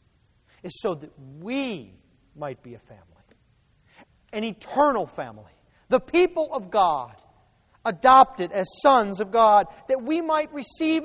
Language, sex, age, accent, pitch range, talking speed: English, male, 40-59, American, 175-280 Hz, 130 wpm